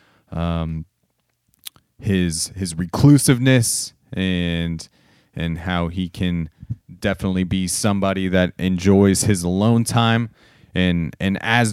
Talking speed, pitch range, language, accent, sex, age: 100 wpm, 90-110 Hz, English, American, male, 30-49